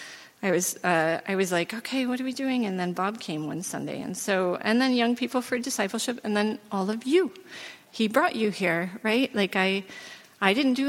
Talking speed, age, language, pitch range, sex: 220 wpm, 40-59, English, 180-225 Hz, female